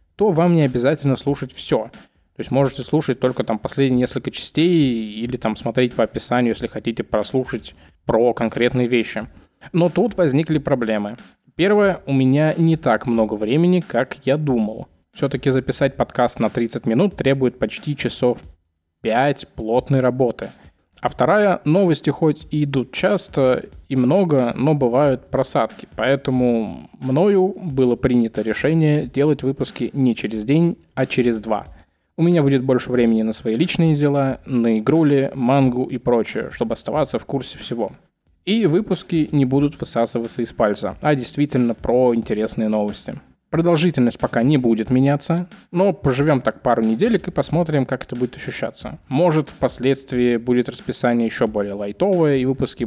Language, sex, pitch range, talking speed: Russian, male, 115-150 Hz, 150 wpm